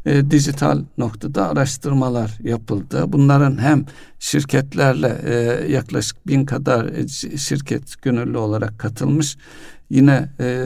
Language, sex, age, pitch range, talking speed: Turkish, male, 60-79, 115-140 Hz, 100 wpm